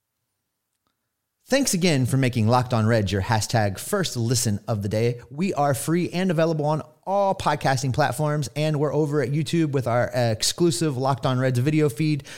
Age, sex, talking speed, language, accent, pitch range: 30-49, male, 175 wpm, English, American, 115-155 Hz